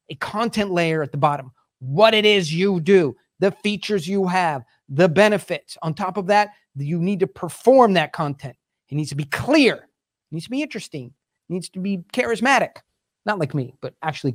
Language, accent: English, American